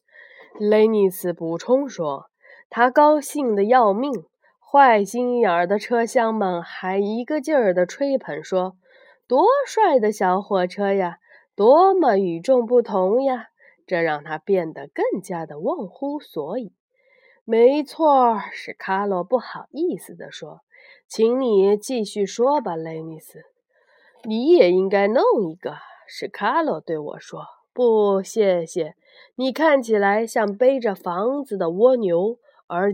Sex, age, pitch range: female, 20-39, 185-280 Hz